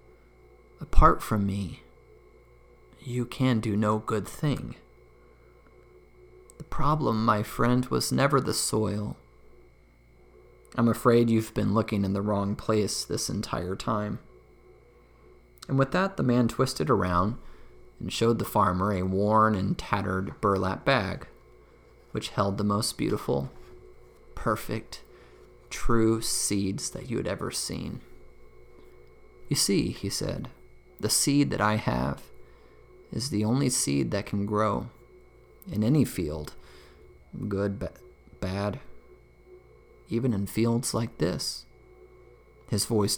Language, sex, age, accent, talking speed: English, male, 30-49, American, 120 wpm